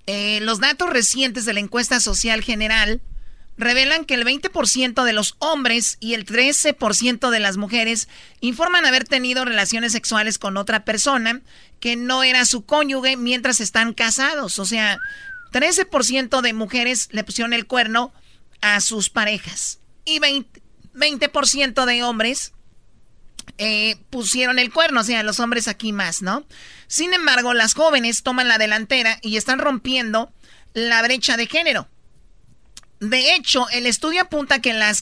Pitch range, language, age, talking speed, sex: 220-265 Hz, Spanish, 40-59, 150 wpm, male